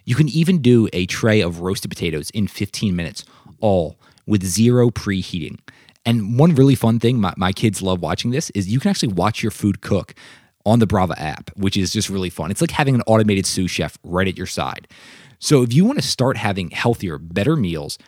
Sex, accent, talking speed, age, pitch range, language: male, American, 215 wpm, 20-39, 100-135 Hz, English